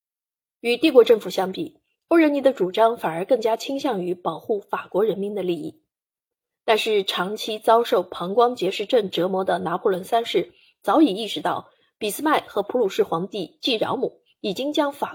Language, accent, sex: Chinese, native, female